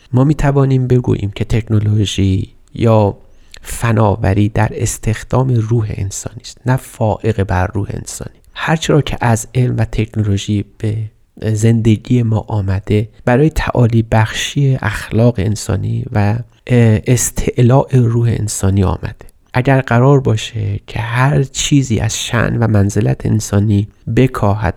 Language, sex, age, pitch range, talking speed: Persian, male, 30-49, 100-120 Hz, 125 wpm